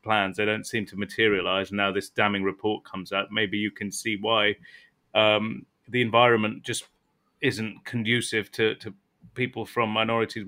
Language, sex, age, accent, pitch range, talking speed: English, male, 30-49, British, 110-135 Hz, 160 wpm